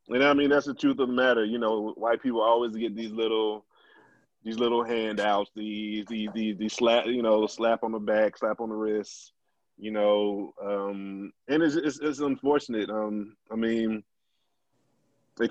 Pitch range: 105-120 Hz